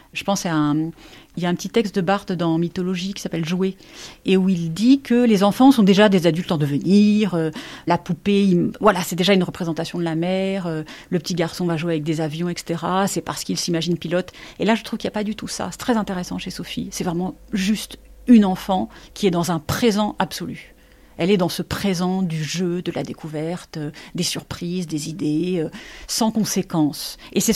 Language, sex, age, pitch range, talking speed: French, female, 40-59, 170-225 Hz, 220 wpm